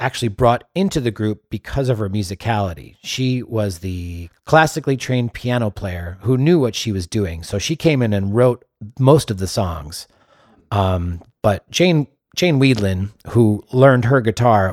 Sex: male